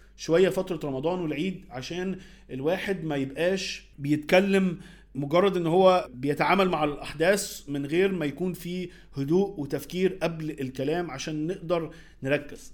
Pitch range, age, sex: 145-185 Hz, 40-59, male